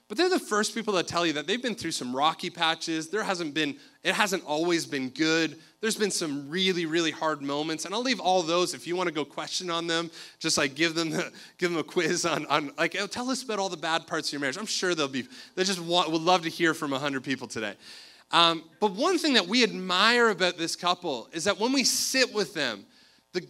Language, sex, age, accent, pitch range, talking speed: English, male, 30-49, American, 165-235 Hz, 250 wpm